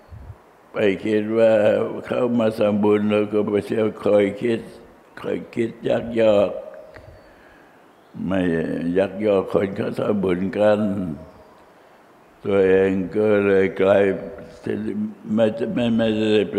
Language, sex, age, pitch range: Thai, male, 60-79, 100-110 Hz